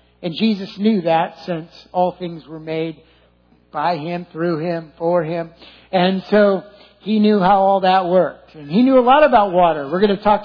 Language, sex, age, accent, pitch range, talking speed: English, male, 60-79, American, 175-235 Hz, 195 wpm